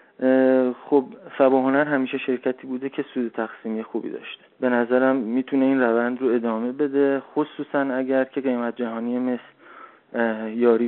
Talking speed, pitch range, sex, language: 140 wpm, 120-135 Hz, male, Persian